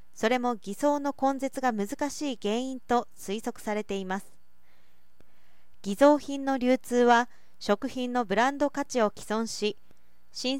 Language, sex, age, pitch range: Japanese, female, 40-59, 205-265 Hz